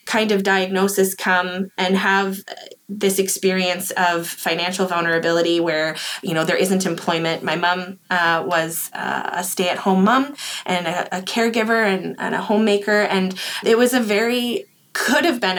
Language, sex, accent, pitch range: English, female, American, 175-200 Hz